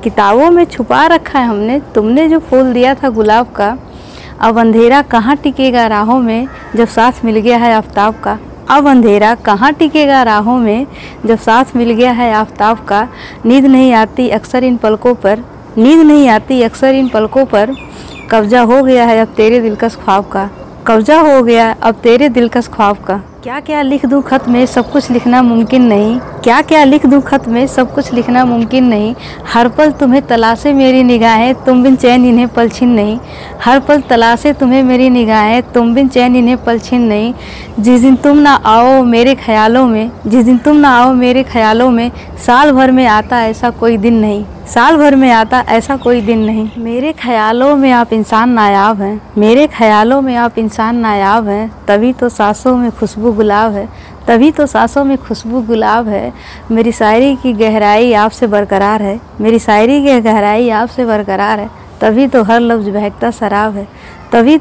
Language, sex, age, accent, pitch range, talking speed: Hindi, female, 20-39, native, 220-260 Hz, 185 wpm